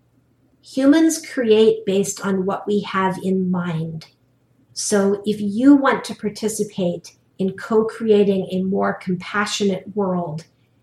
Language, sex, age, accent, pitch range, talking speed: English, female, 40-59, American, 175-210 Hz, 115 wpm